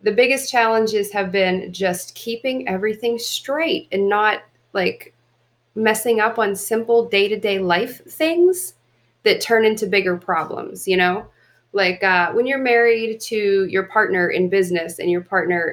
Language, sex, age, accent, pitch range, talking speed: English, female, 30-49, American, 185-230 Hz, 150 wpm